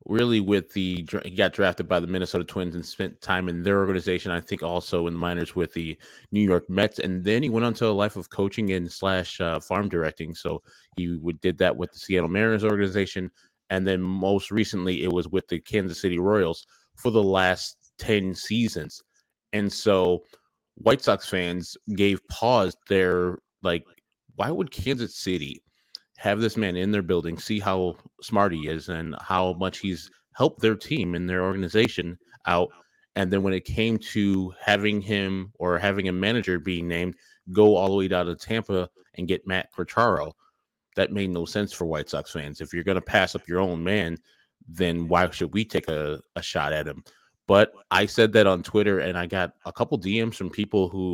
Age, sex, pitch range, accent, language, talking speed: 30-49, male, 90-100 Hz, American, English, 200 wpm